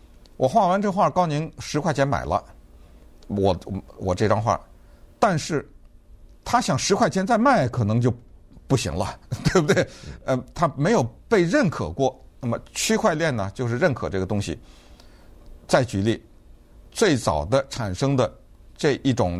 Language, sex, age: Chinese, male, 50-69